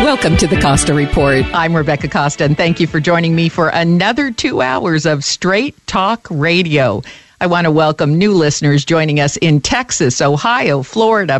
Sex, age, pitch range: female, 50-69, 155-215 Hz